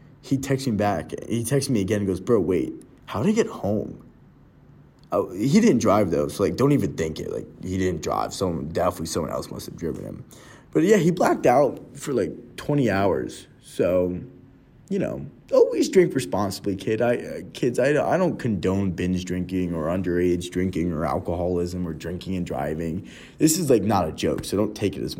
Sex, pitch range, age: male, 90-120 Hz, 20-39